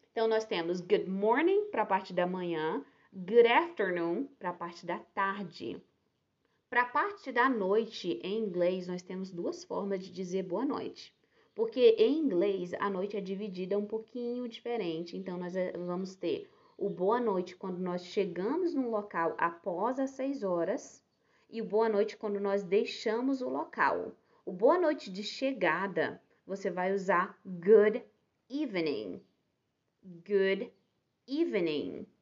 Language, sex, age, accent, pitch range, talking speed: English, female, 20-39, Brazilian, 190-265 Hz, 145 wpm